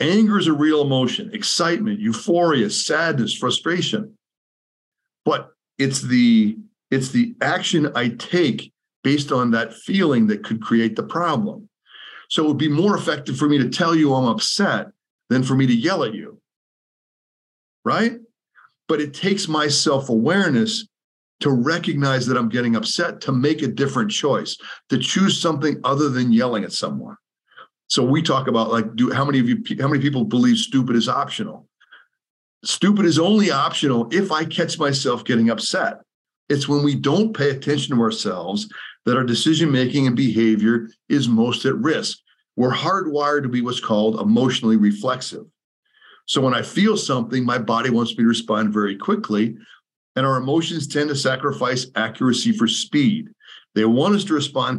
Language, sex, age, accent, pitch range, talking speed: English, male, 40-59, American, 120-170 Hz, 165 wpm